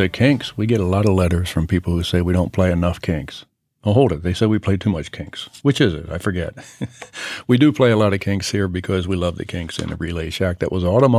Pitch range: 90-115 Hz